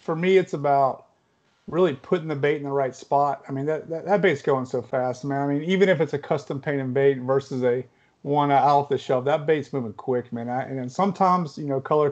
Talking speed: 240 wpm